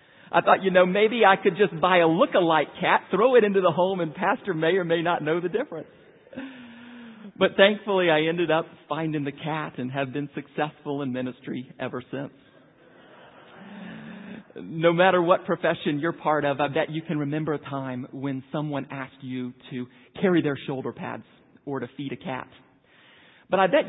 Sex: male